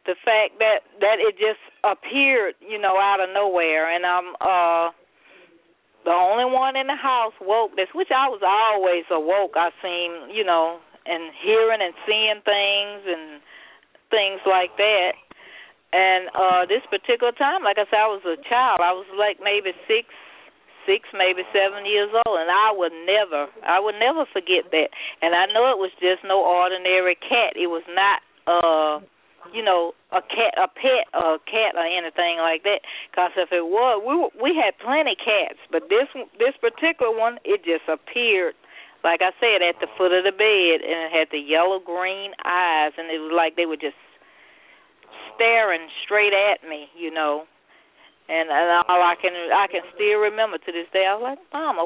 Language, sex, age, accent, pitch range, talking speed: English, female, 40-59, American, 175-230 Hz, 185 wpm